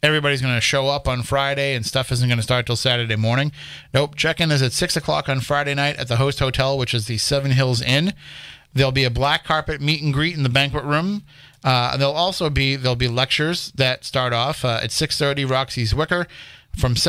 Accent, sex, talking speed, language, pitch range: American, male, 220 wpm, English, 125-150 Hz